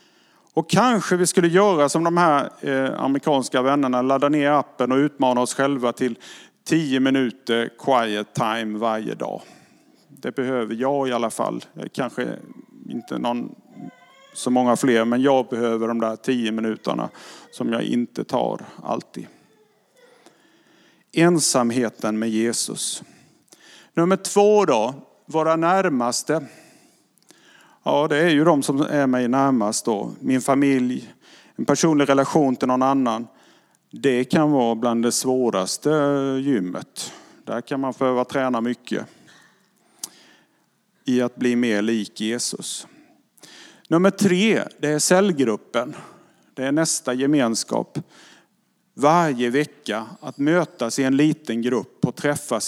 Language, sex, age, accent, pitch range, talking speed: English, male, 50-69, Norwegian, 120-150 Hz, 130 wpm